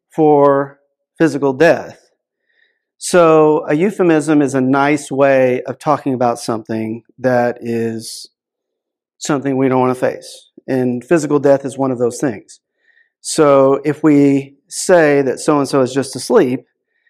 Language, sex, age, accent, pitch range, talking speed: English, male, 40-59, American, 130-165 Hz, 135 wpm